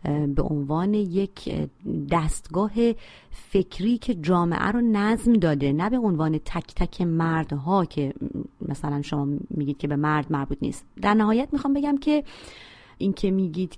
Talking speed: 140 wpm